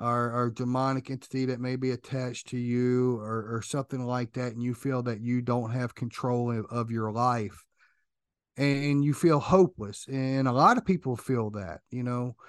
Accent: American